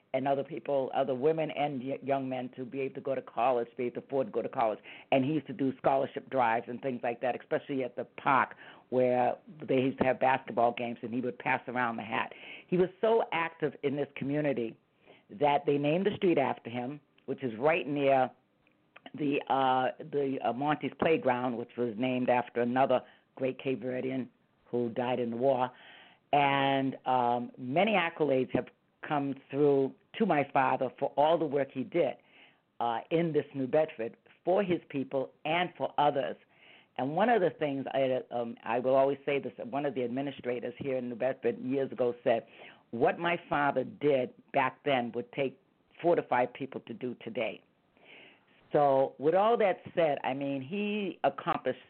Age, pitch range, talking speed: 50-69, 125-145 Hz, 185 wpm